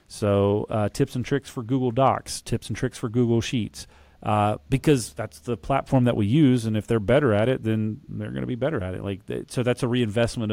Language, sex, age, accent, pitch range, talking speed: English, male, 40-59, American, 105-125 Hz, 240 wpm